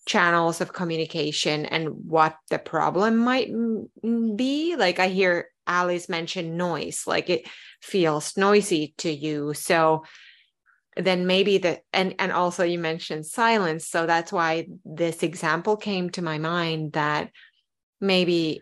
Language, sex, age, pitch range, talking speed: English, female, 30-49, 165-200 Hz, 140 wpm